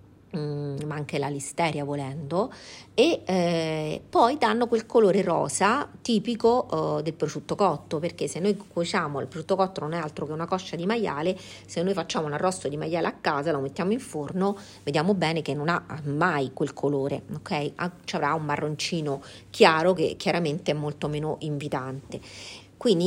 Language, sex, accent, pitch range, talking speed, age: Italian, female, native, 150-195 Hz, 170 wpm, 40-59